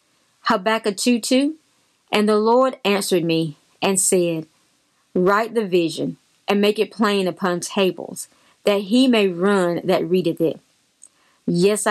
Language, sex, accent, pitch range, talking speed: English, female, American, 175-225 Hz, 135 wpm